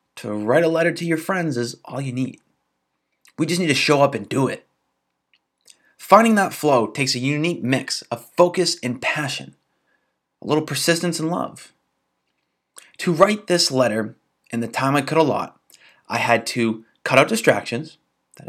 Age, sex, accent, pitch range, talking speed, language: 20-39, male, American, 115-160 Hz, 180 wpm, English